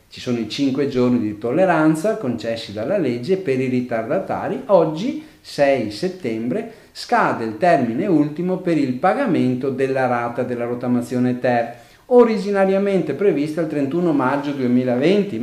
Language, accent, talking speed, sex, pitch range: Italian, native, 130 wpm, male, 115-165 Hz